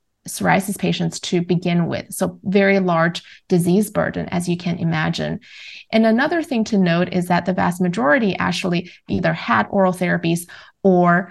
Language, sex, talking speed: English, female, 160 wpm